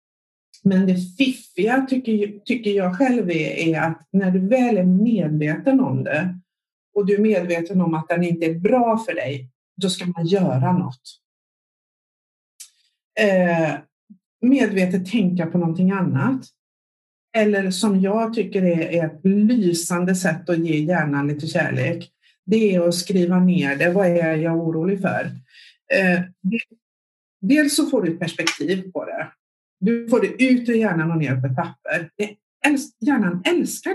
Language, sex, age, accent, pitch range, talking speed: Swedish, female, 50-69, native, 175-270 Hz, 150 wpm